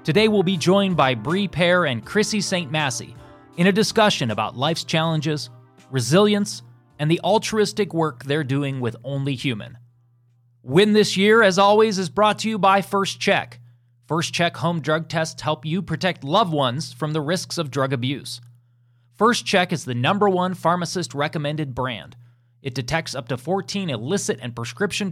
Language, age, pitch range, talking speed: English, 30-49, 120-175 Hz, 170 wpm